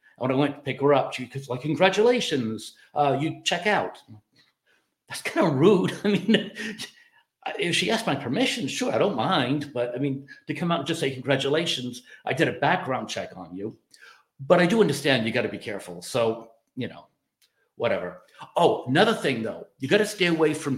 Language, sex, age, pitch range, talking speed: English, male, 50-69, 115-155 Hz, 200 wpm